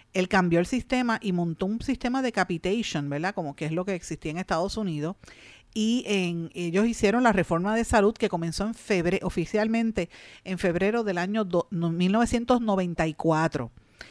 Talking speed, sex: 150 wpm, female